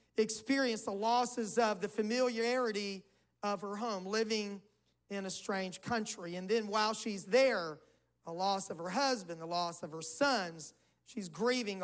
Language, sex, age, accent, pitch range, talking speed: English, male, 40-59, American, 180-245 Hz, 155 wpm